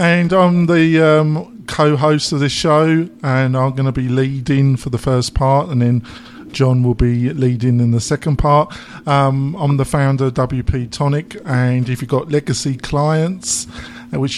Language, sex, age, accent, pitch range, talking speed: English, male, 50-69, British, 130-170 Hz, 175 wpm